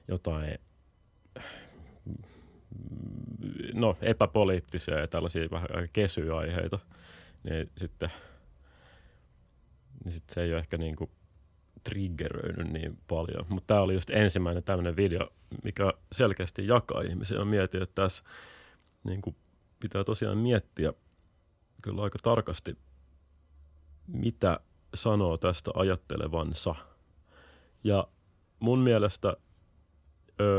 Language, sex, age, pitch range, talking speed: Finnish, male, 30-49, 85-105 Hz, 100 wpm